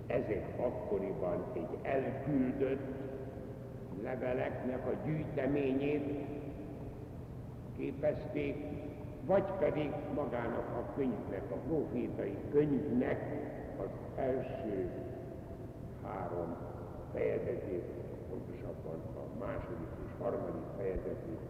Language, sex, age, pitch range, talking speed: Hungarian, male, 70-89, 110-145 Hz, 75 wpm